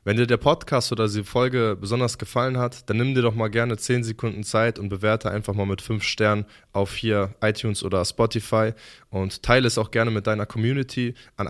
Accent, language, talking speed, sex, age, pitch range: German, German, 210 wpm, male, 20-39, 105-130 Hz